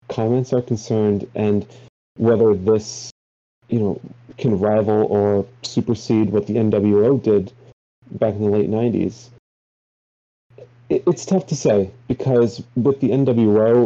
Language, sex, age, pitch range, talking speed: English, male, 30-49, 105-125 Hz, 130 wpm